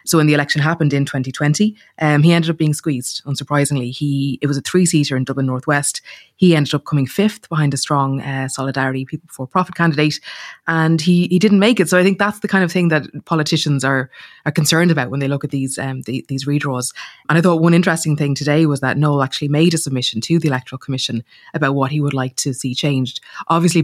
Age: 20-39